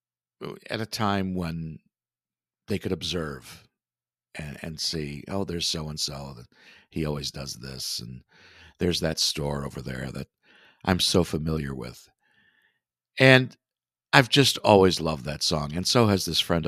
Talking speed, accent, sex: 150 wpm, American, male